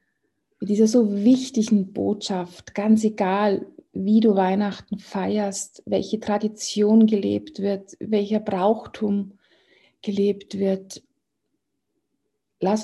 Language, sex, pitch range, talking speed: German, female, 190-230 Hz, 90 wpm